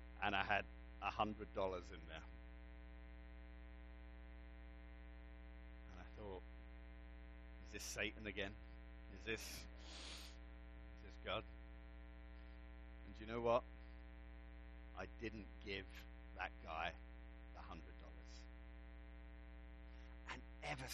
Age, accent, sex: 50-69, British, male